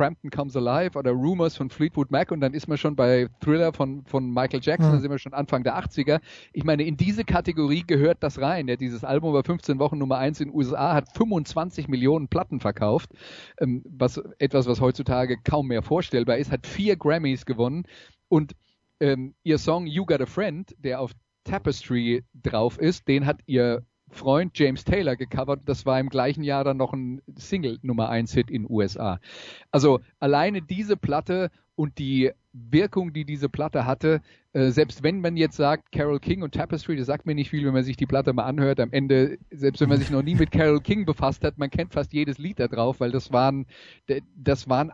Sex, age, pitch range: male, 40-59, 130-155 Hz